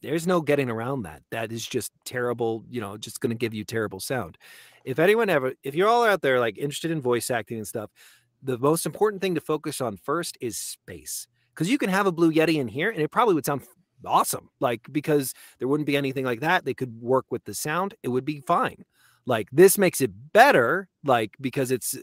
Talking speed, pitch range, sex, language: 230 wpm, 115-145 Hz, male, English